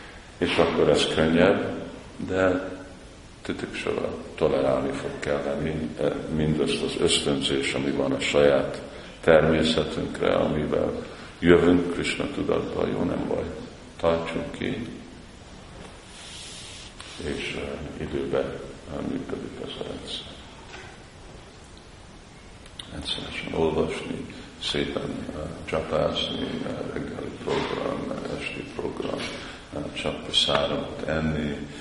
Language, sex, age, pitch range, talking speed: Hungarian, male, 50-69, 70-80 Hz, 80 wpm